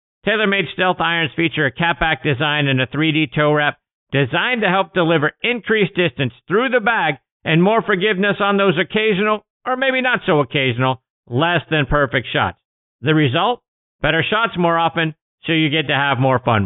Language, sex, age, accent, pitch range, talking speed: English, male, 50-69, American, 140-185 Hz, 170 wpm